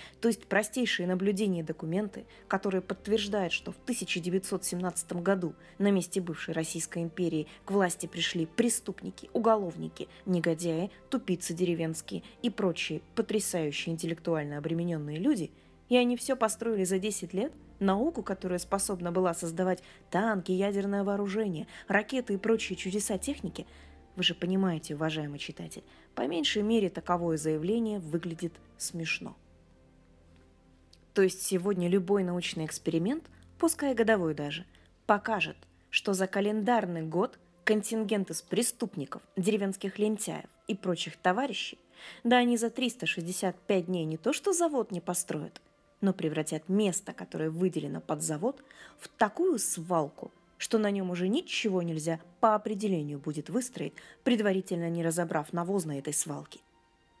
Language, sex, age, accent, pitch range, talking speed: Russian, female, 20-39, native, 165-210 Hz, 130 wpm